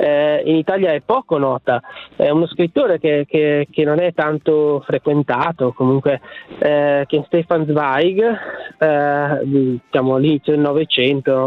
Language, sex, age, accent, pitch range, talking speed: Italian, male, 20-39, native, 150-175 Hz, 135 wpm